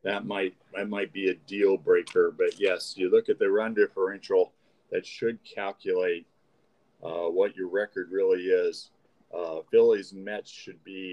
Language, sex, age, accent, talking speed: English, male, 50-69, American, 160 wpm